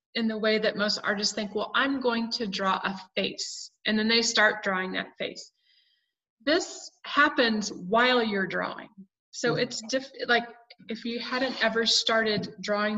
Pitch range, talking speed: 195-235 Hz, 160 wpm